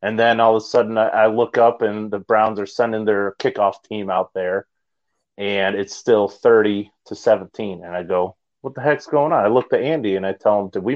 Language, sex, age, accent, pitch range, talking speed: English, male, 30-49, American, 100-130 Hz, 235 wpm